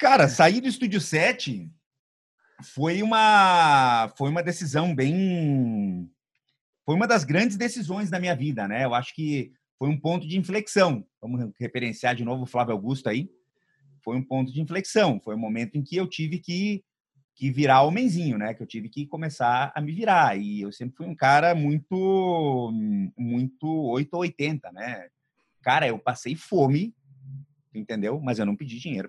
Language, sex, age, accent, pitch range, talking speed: Portuguese, male, 30-49, Brazilian, 125-185 Hz, 170 wpm